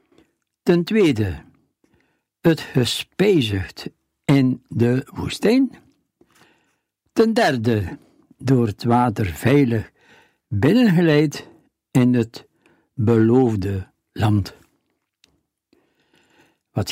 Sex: male